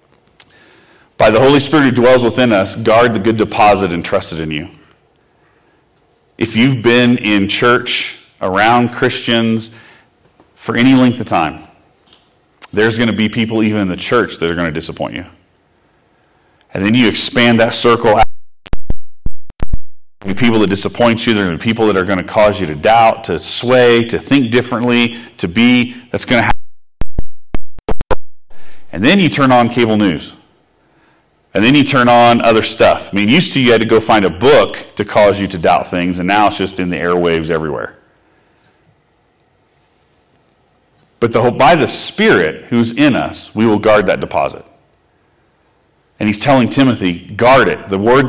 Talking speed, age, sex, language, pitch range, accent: 170 wpm, 40-59, male, English, 100-120 Hz, American